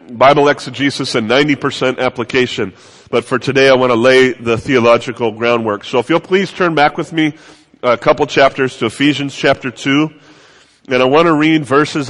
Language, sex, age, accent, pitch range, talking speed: English, male, 30-49, American, 125-150 Hz, 180 wpm